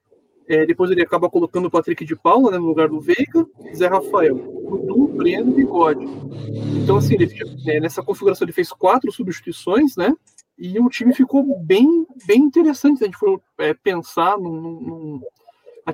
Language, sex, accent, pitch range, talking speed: Portuguese, male, Brazilian, 170-270 Hz, 175 wpm